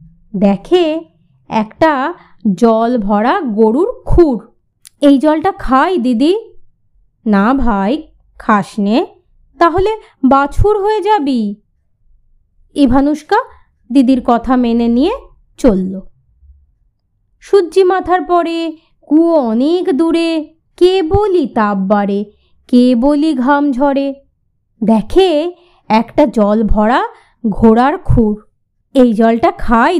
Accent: native